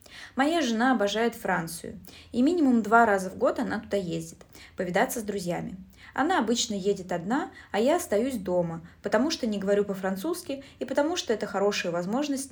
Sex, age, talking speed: female, 20-39, 170 wpm